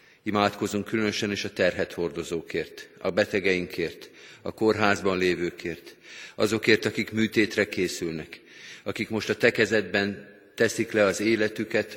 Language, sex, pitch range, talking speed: Hungarian, male, 95-110 Hz, 115 wpm